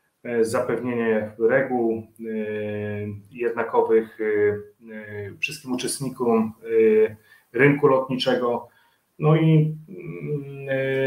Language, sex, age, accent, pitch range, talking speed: Polish, male, 30-49, native, 110-150 Hz, 75 wpm